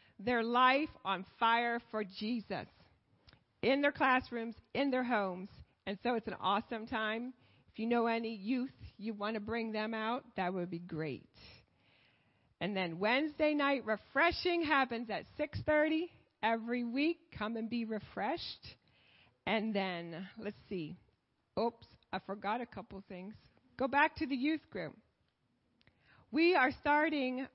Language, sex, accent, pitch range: English, female, American, 215-300 Hz